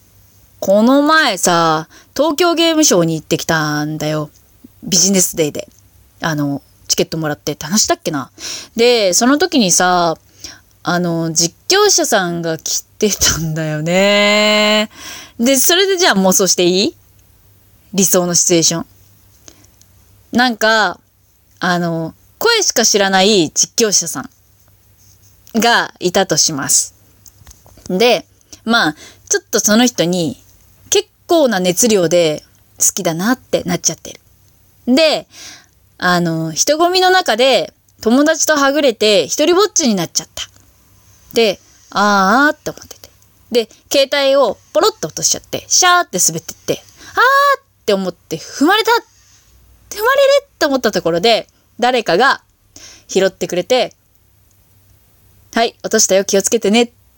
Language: Japanese